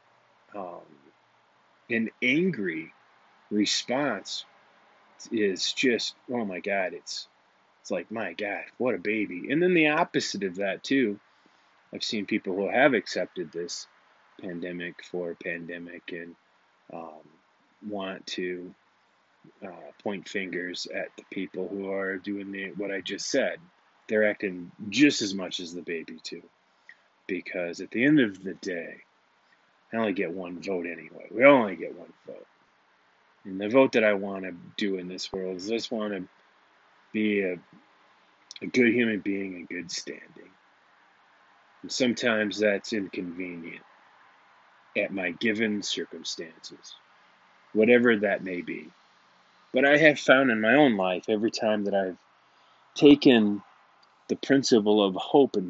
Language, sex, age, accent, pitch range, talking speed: English, male, 30-49, American, 90-110 Hz, 145 wpm